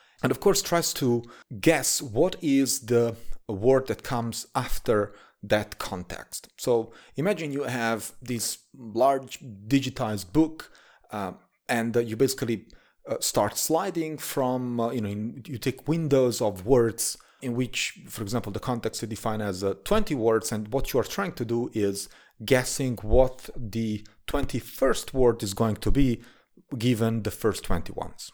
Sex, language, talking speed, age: male, English, 155 wpm, 30-49